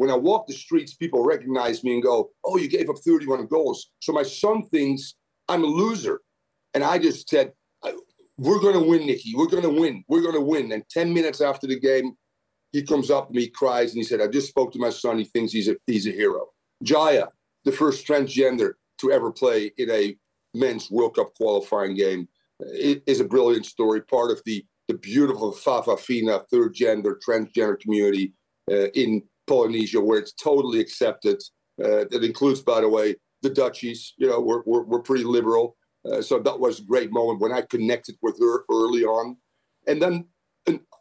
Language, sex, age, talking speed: English, male, 50-69, 200 wpm